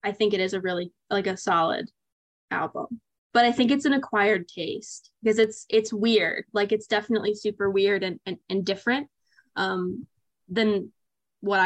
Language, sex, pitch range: English, female, 185-220 Hz